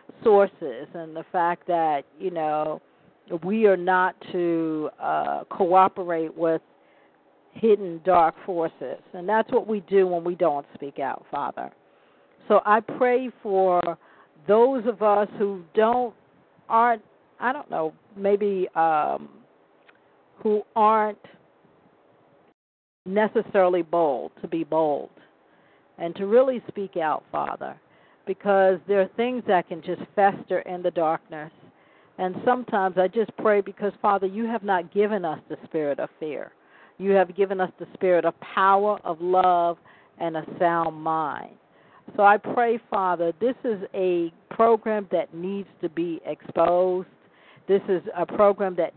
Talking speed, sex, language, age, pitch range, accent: 140 wpm, female, English, 50-69, 170-210 Hz, American